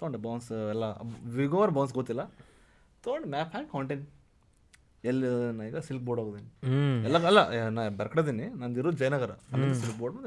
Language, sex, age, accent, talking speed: Kannada, male, 20-39, native, 140 wpm